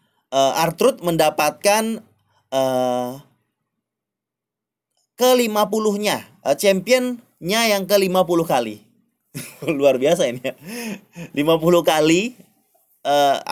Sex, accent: male, native